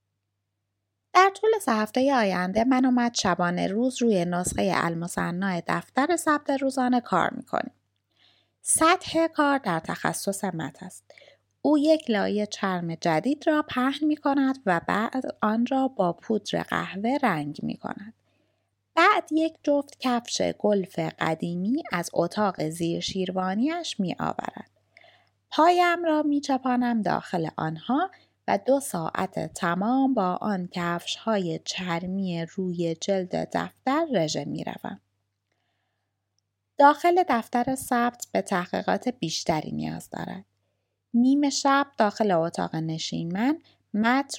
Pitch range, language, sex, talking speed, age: 170-265 Hz, Persian, female, 120 wpm, 20-39